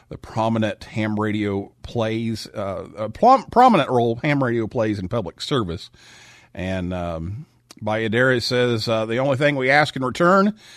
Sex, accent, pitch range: male, American, 115-160 Hz